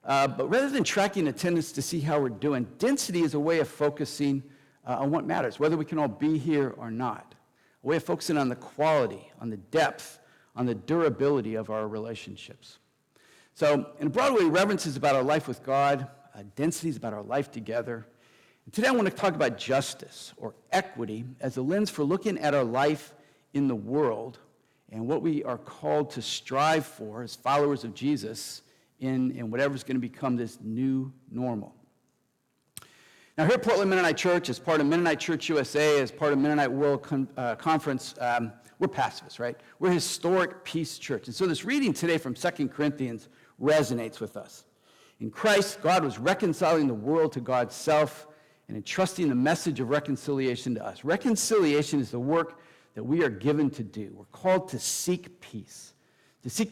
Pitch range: 125-165 Hz